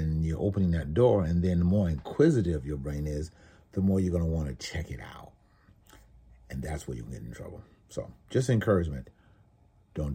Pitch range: 75-95 Hz